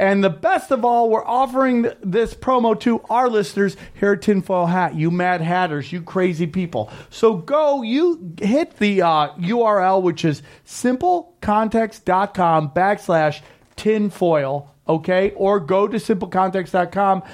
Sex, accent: male, American